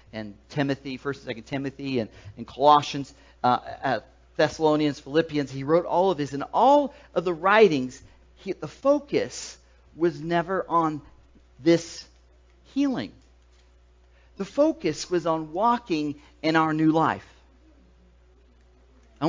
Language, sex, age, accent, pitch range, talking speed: English, male, 50-69, American, 125-170 Hz, 125 wpm